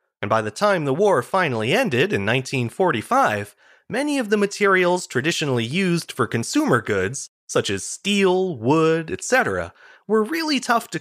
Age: 30-49